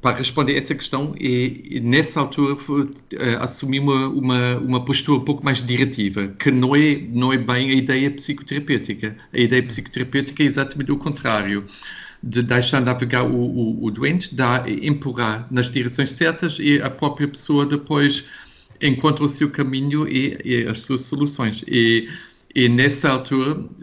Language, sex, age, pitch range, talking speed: Portuguese, male, 50-69, 125-145 Hz, 165 wpm